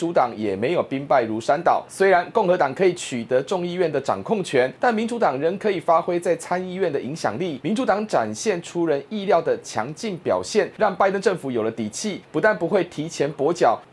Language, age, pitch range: Chinese, 30-49, 160-215 Hz